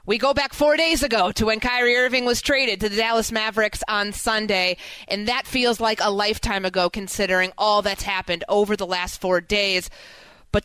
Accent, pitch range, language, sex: American, 195-275 Hz, English, female